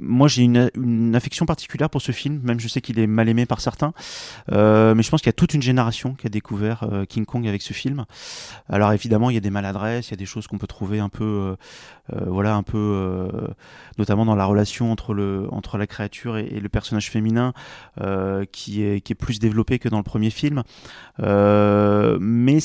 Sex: male